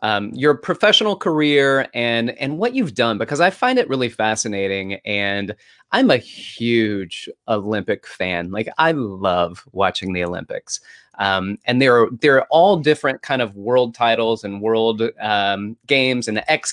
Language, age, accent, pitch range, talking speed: English, 30-49, American, 110-155 Hz, 160 wpm